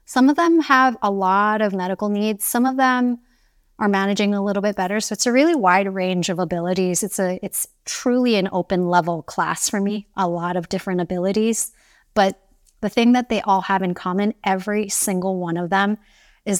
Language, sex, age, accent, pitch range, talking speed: English, female, 30-49, American, 185-215 Hz, 205 wpm